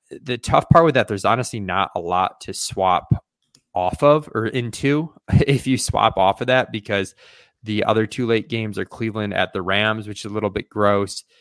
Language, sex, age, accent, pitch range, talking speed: English, male, 20-39, American, 95-110 Hz, 205 wpm